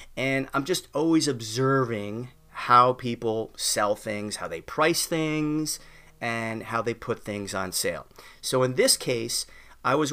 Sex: male